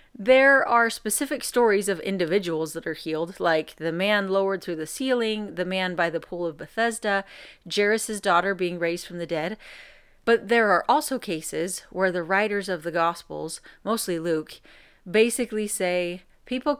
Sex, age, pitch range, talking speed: female, 30-49, 175-225 Hz, 165 wpm